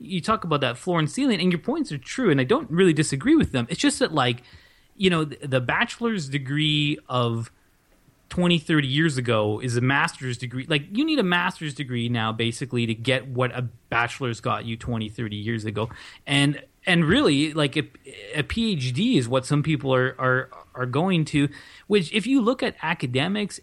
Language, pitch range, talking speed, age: English, 125-170 Hz, 200 wpm, 20-39